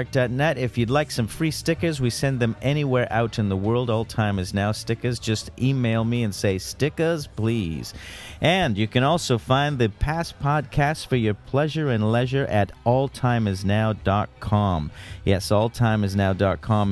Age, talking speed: 40-59, 155 wpm